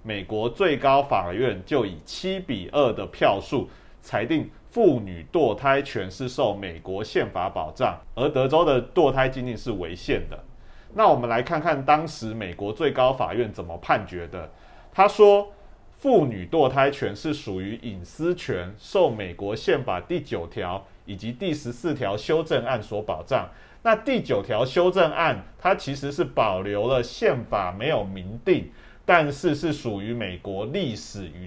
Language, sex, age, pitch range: Chinese, male, 30-49, 105-155 Hz